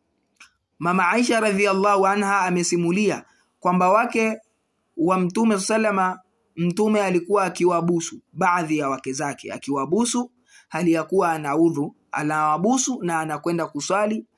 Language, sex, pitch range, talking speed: Swahili, male, 160-210 Hz, 105 wpm